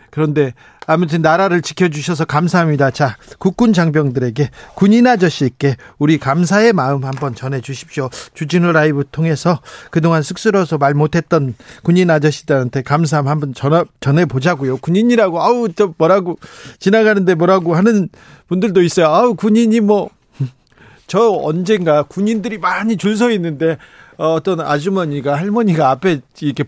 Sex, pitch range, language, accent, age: male, 145-195 Hz, Korean, native, 40-59